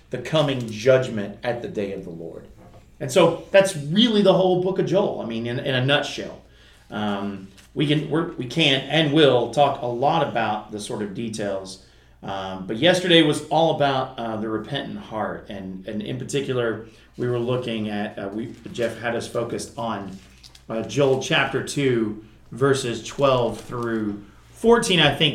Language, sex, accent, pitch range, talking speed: English, male, American, 100-135 Hz, 180 wpm